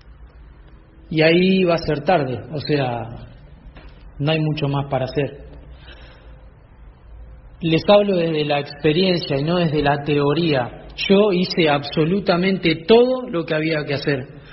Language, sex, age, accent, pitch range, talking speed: Spanish, male, 40-59, Argentinian, 140-180 Hz, 135 wpm